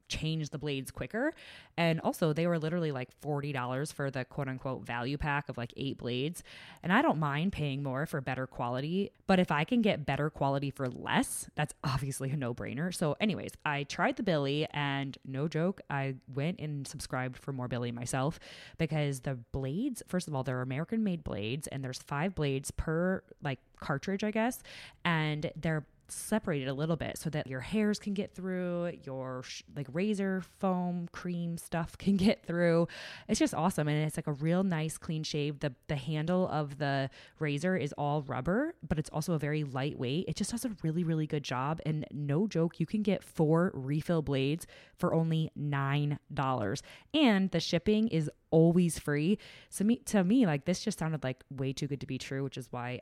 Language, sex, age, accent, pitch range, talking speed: English, female, 20-39, American, 135-175 Hz, 195 wpm